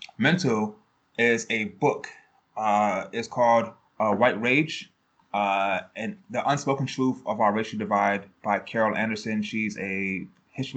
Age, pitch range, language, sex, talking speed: 20-39, 105-125 Hz, English, male, 140 wpm